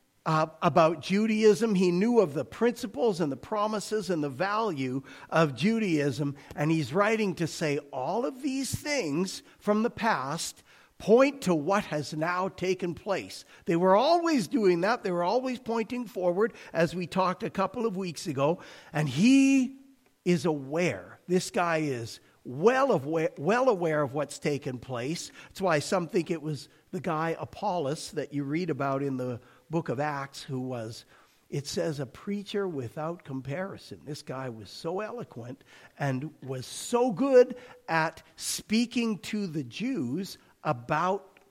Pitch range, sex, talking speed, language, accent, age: 150-205 Hz, male, 155 wpm, English, American, 50-69